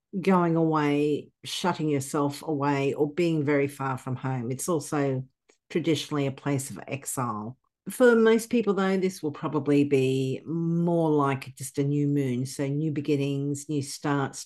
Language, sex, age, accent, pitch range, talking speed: English, female, 50-69, Australian, 135-155 Hz, 155 wpm